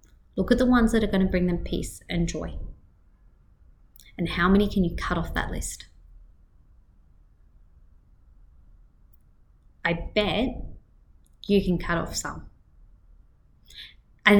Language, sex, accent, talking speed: English, female, Australian, 125 wpm